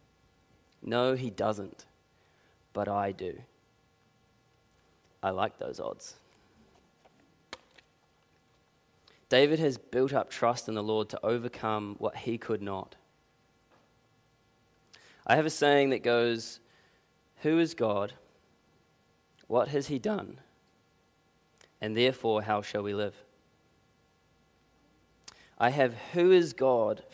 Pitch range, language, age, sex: 110-130 Hz, English, 20-39, male